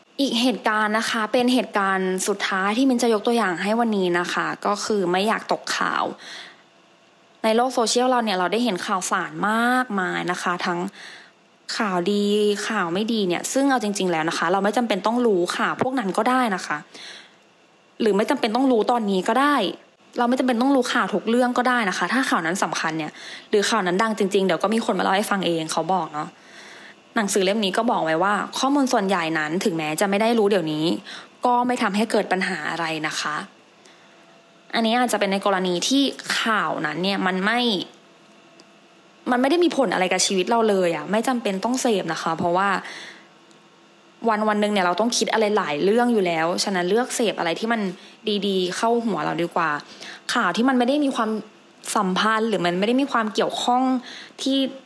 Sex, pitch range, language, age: female, 185-240 Hz, English, 20-39